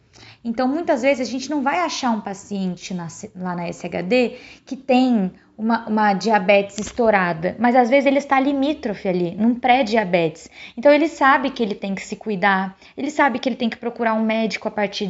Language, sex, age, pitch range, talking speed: Portuguese, female, 20-39, 210-280 Hz, 190 wpm